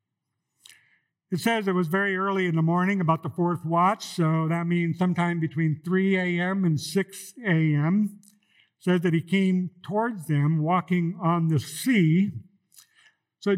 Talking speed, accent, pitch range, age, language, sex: 155 wpm, American, 160-210 Hz, 50-69, English, male